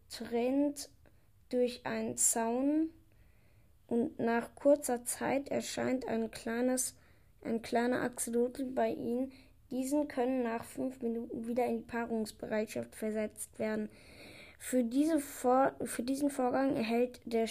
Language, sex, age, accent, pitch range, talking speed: German, female, 20-39, German, 225-255 Hz, 120 wpm